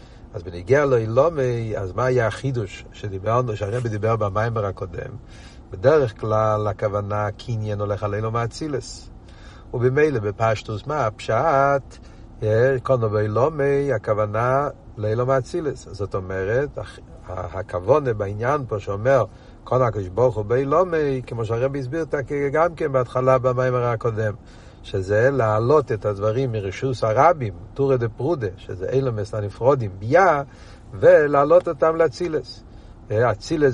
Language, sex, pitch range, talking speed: Hebrew, male, 105-130 Hz, 110 wpm